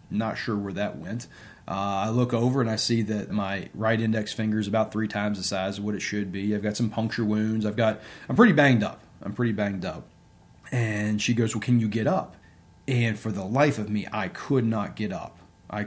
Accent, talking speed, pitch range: American, 240 wpm, 105-120 Hz